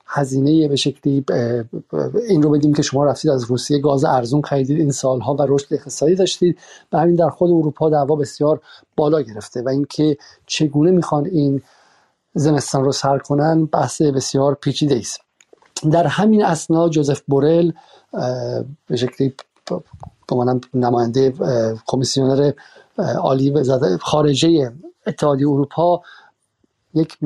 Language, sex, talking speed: Persian, male, 125 wpm